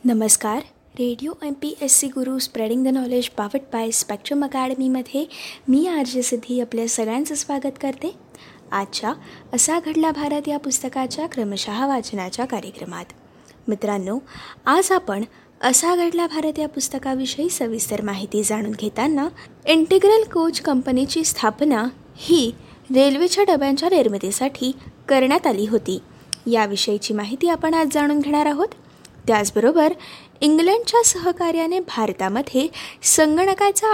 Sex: female